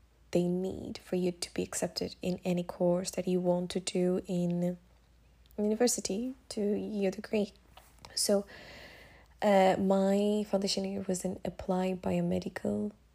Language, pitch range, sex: English, 175-205 Hz, female